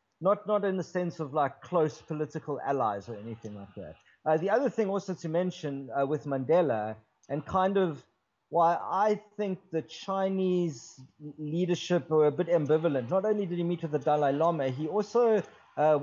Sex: male